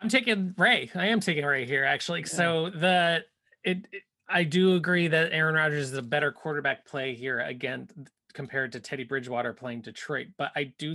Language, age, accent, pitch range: English, 20-39, American, 120-155 Hz